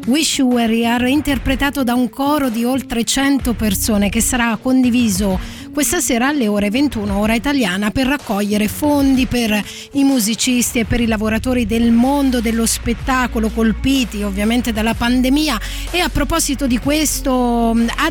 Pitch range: 220-265 Hz